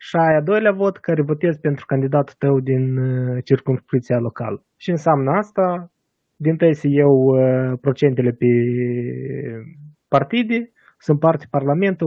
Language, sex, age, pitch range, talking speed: Romanian, male, 20-39, 125-150 Hz, 125 wpm